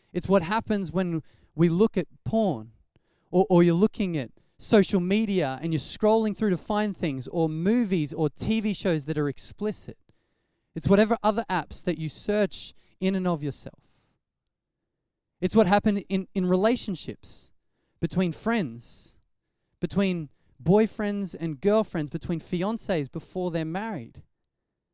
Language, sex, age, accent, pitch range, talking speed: English, male, 20-39, Australian, 160-205 Hz, 135 wpm